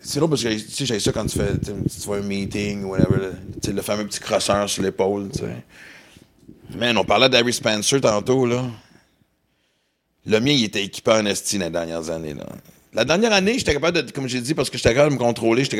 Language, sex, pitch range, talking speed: French, male, 110-140 Hz, 235 wpm